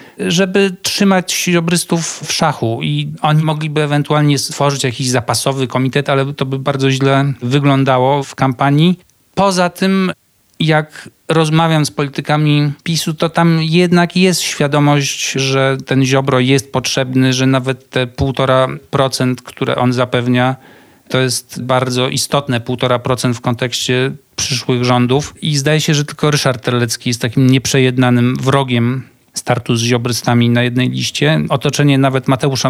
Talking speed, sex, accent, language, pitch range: 135 wpm, male, native, Polish, 125-150 Hz